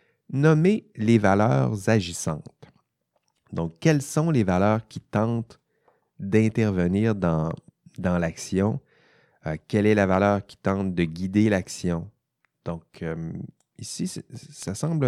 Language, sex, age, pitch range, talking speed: French, male, 30-49, 85-120 Hz, 125 wpm